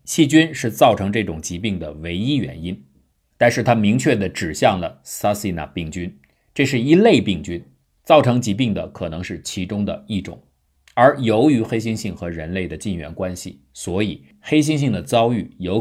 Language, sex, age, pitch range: Chinese, male, 50-69, 85-115 Hz